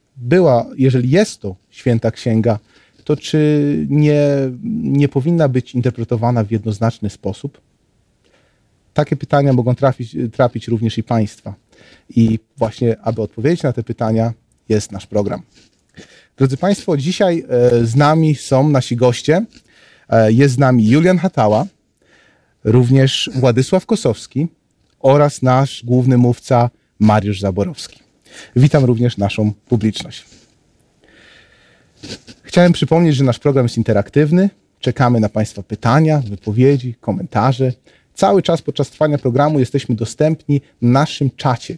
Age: 30-49